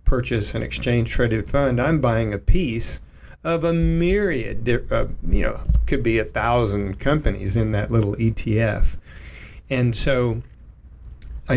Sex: male